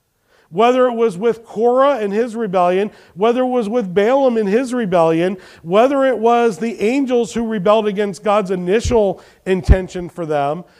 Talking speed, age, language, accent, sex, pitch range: 160 wpm, 40-59, English, American, male, 175-225 Hz